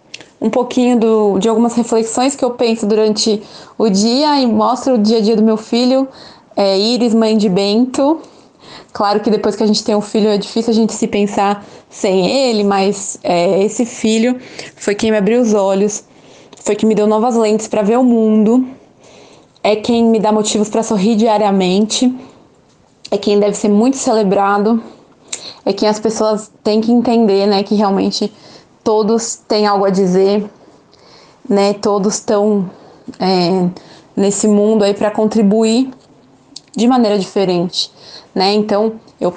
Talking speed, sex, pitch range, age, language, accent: 160 wpm, female, 200-230 Hz, 20-39, Portuguese, Brazilian